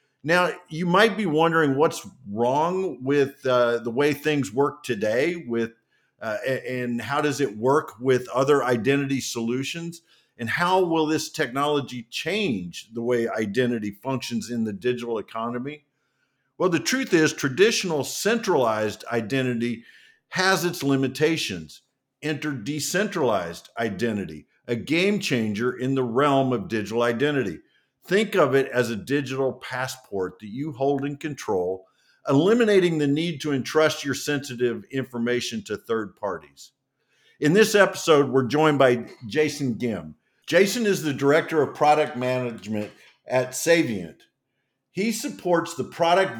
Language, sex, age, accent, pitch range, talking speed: English, male, 50-69, American, 120-155 Hz, 135 wpm